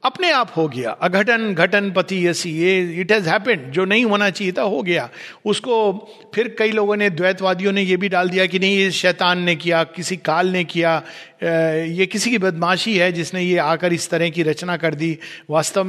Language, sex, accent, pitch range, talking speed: Hindi, male, native, 170-225 Hz, 210 wpm